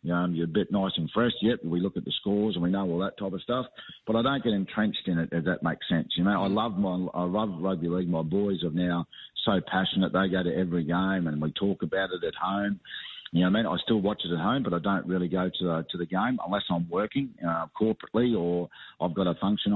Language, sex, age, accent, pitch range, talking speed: English, male, 40-59, Australian, 85-100 Hz, 275 wpm